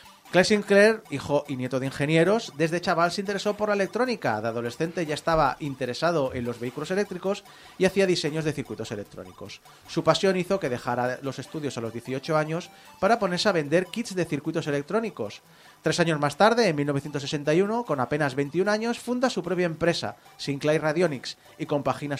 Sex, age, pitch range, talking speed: male, 30-49, 135-185 Hz, 180 wpm